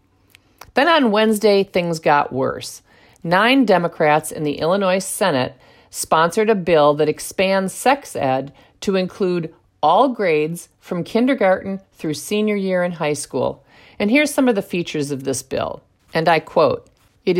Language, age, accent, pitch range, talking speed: English, 50-69, American, 155-215 Hz, 150 wpm